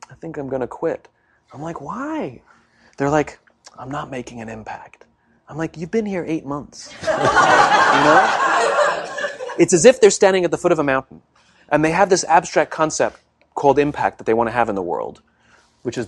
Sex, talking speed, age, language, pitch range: male, 195 wpm, 30-49, English, 135-200 Hz